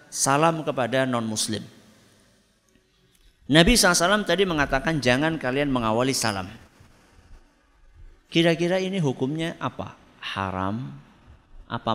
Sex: male